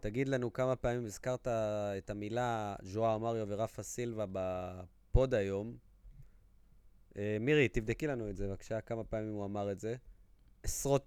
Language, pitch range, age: Hebrew, 95-115 Hz, 20-39